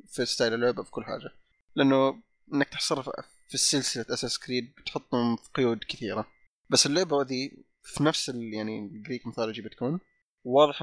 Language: Arabic